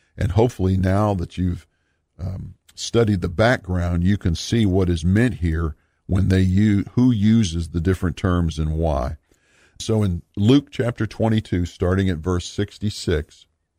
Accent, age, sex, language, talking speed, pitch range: American, 50-69, male, English, 150 wpm, 85-110 Hz